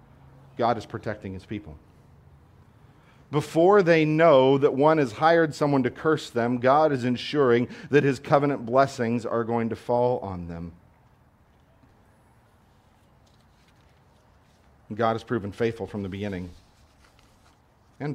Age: 50-69